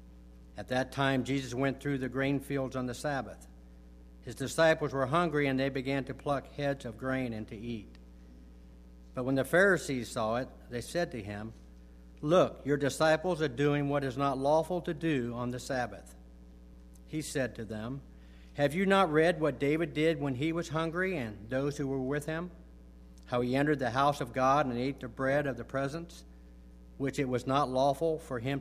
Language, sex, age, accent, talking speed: English, male, 60-79, American, 195 wpm